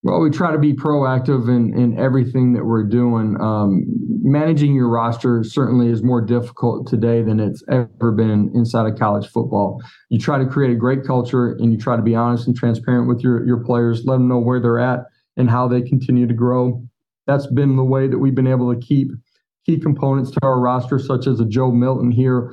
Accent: American